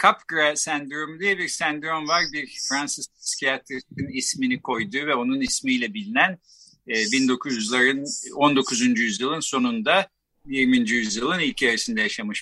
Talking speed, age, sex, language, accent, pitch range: 115 wpm, 50-69, male, Turkish, native, 150-215 Hz